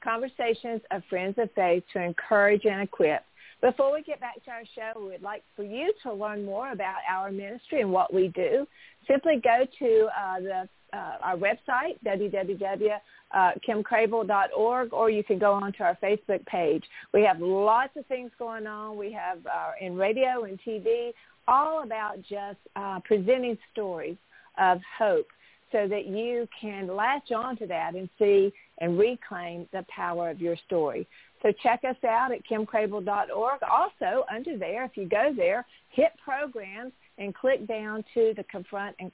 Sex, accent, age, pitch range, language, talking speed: female, American, 50-69, 190-235 Hz, English, 165 wpm